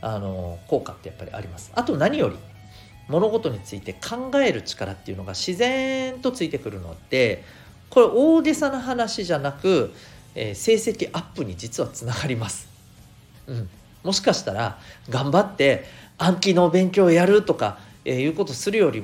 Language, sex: Japanese, male